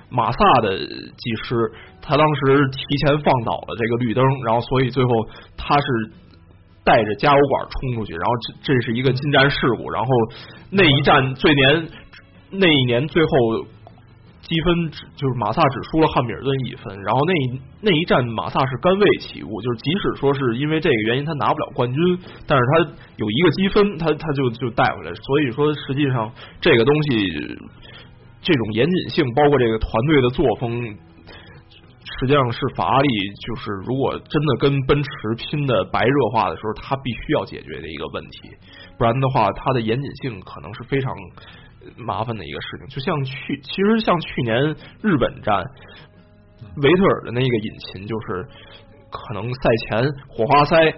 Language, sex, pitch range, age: Chinese, male, 110-145 Hz, 20-39